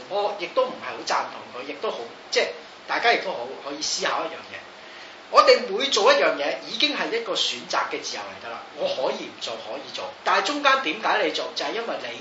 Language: Chinese